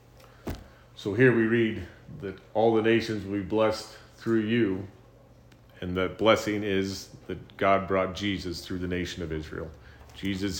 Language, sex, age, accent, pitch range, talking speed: English, male, 40-59, American, 95-110 Hz, 155 wpm